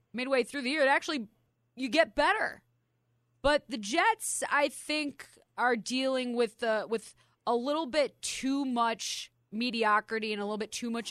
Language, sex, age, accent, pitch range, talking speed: English, female, 20-39, American, 175-235 Hz, 160 wpm